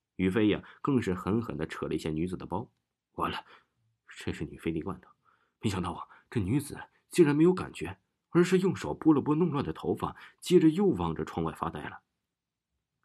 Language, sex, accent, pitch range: Chinese, male, native, 90-150 Hz